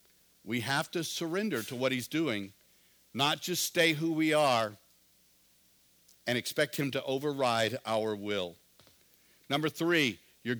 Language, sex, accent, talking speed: English, male, American, 135 wpm